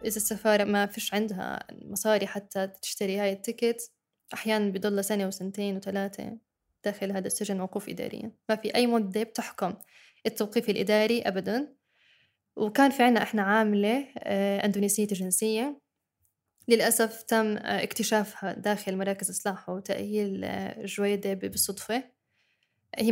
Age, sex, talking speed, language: 10-29, female, 115 wpm, Arabic